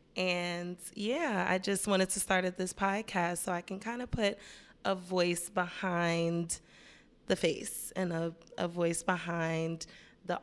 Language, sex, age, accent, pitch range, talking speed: English, female, 20-39, American, 165-195 Hz, 150 wpm